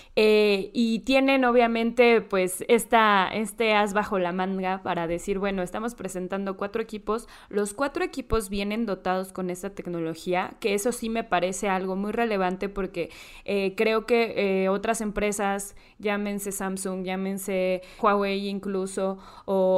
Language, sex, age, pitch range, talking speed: Spanish, female, 20-39, 190-220 Hz, 145 wpm